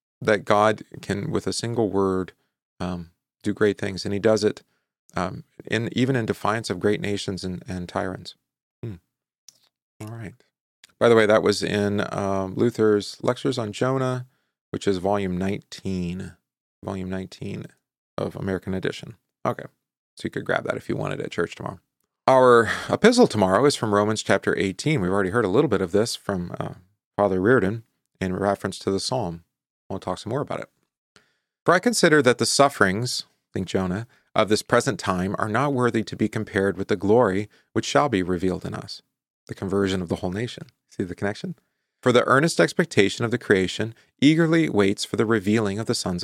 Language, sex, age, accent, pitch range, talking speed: English, male, 30-49, American, 95-120 Hz, 185 wpm